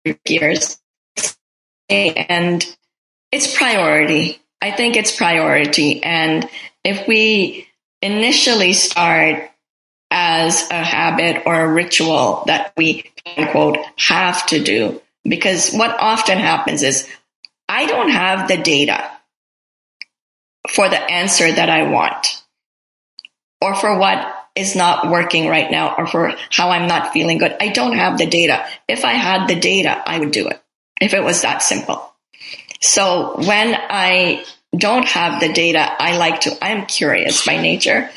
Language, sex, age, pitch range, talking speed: English, female, 30-49, 160-200 Hz, 140 wpm